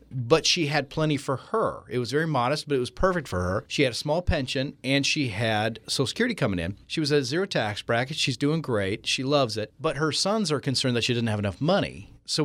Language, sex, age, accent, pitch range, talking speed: English, male, 40-59, American, 120-155 Hz, 250 wpm